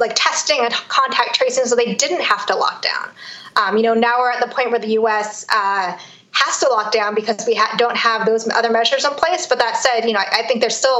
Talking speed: 255 wpm